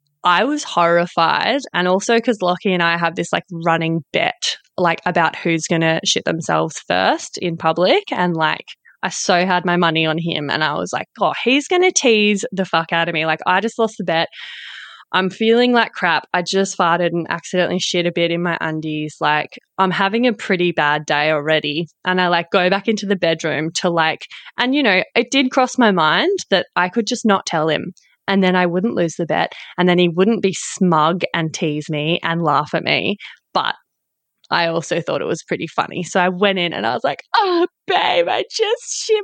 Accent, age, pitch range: Australian, 20-39, 170-220 Hz